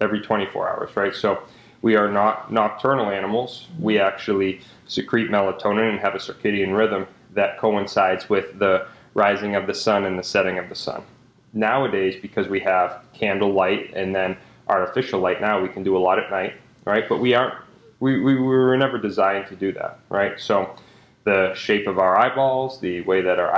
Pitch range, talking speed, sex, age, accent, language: 100-120 Hz, 190 wpm, male, 30-49, American, English